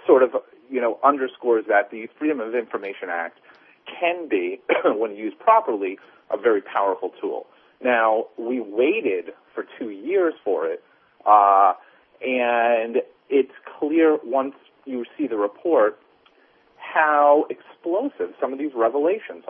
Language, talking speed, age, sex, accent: English, 130 wpm, 40-59, male, American